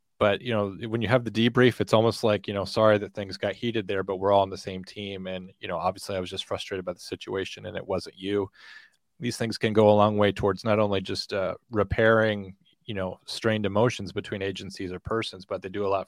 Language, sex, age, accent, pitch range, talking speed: English, male, 30-49, American, 100-115 Hz, 250 wpm